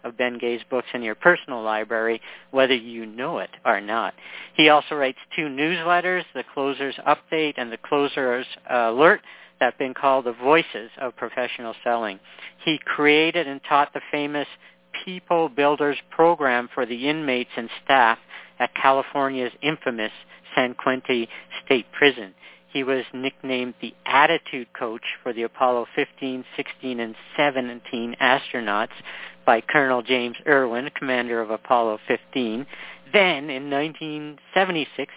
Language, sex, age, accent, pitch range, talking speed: English, male, 50-69, American, 120-145 Hz, 140 wpm